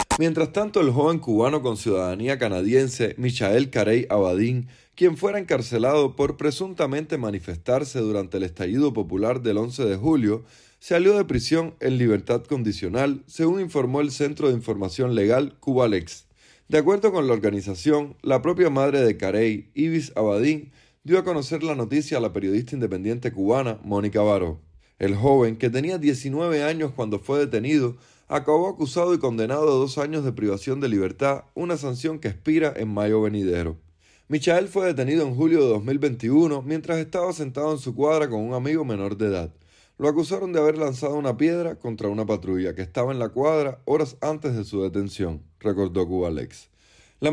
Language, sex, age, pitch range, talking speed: Spanish, male, 20-39, 105-150 Hz, 165 wpm